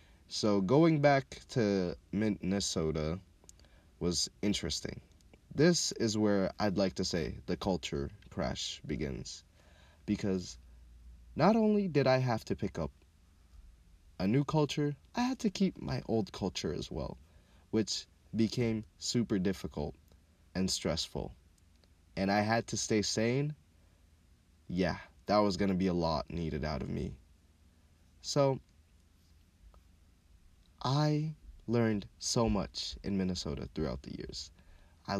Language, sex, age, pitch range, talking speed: English, male, 20-39, 80-105 Hz, 125 wpm